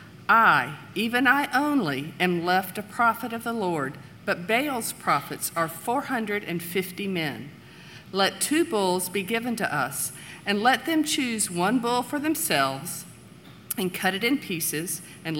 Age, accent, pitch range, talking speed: 50-69, American, 170-235 Hz, 150 wpm